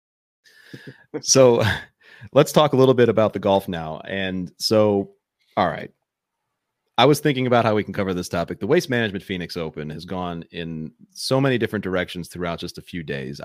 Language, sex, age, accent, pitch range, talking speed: English, male, 30-49, American, 85-105 Hz, 185 wpm